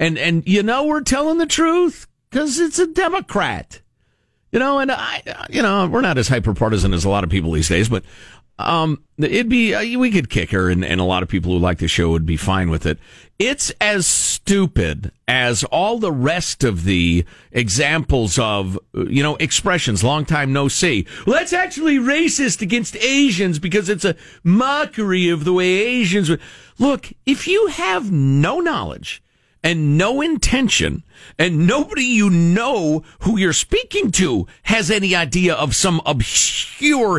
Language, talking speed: English, 175 wpm